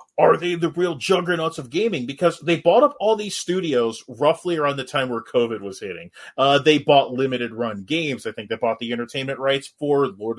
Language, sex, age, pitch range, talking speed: English, male, 30-49, 130-180 Hz, 215 wpm